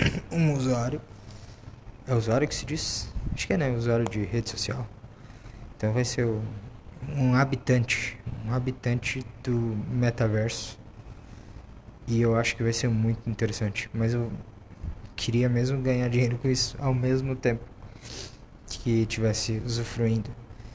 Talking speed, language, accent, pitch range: 135 wpm, Portuguese, Brazilian, 110-125 Hz